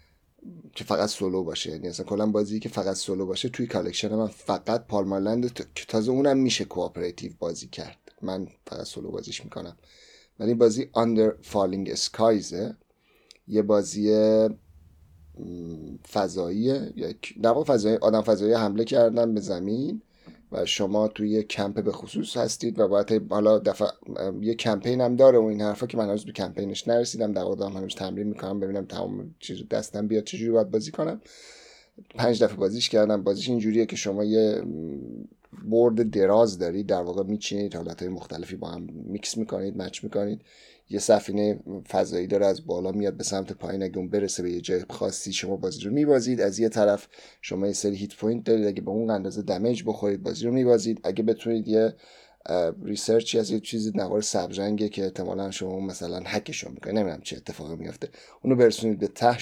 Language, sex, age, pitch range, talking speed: Persian, male, 30-49, 95-115 Hz, 175 wpm